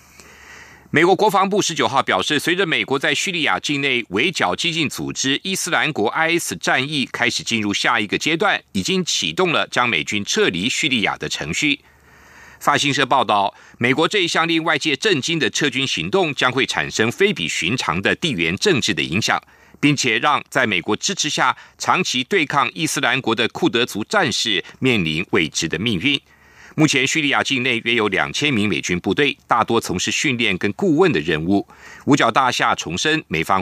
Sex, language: male, German